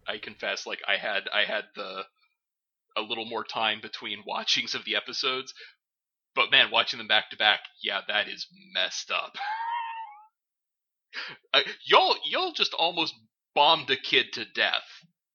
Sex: male